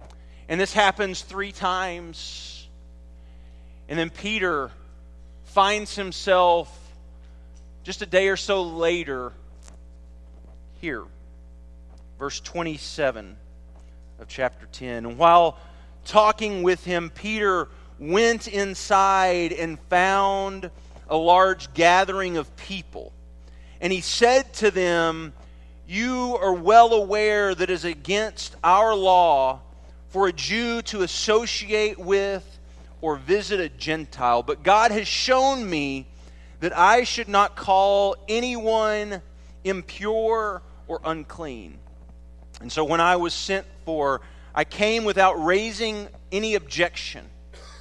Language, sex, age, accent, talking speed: English, male, 40-59, American, 110 wpm